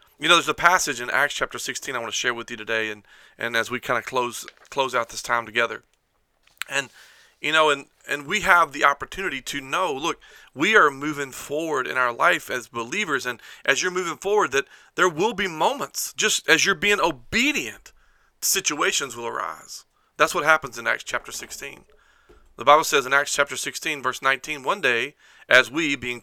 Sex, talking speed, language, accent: male, 200 wpm, English, American